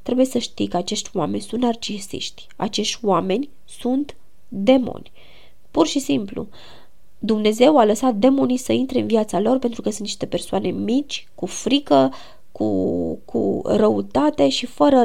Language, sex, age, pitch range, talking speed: Romanian, female, 20-39, 200-255 Hz, 150 wpm